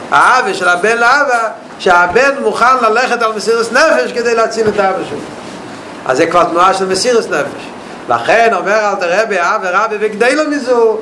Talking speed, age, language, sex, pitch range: 170 wpm, 50-69, Hebrew, male, 185-225 Hz